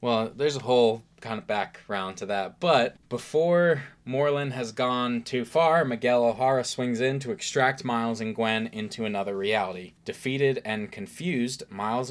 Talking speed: 160 wpm